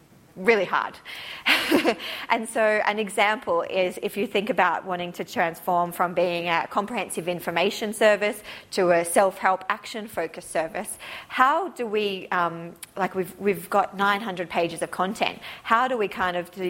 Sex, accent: female, Australian